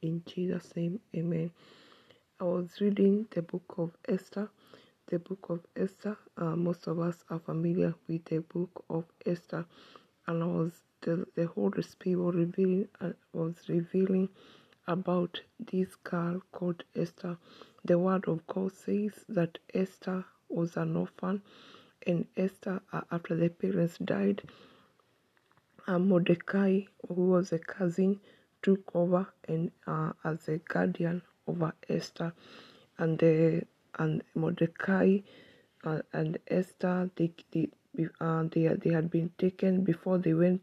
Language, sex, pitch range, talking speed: English, female, 170-190 Hz, 135 wpm